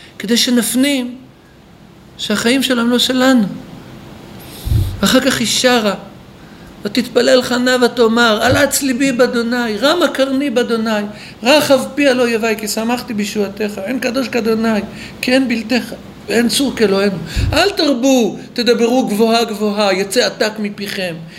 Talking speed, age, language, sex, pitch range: 125 wpm, 50-69, Hebrew, male, 205-270 Hz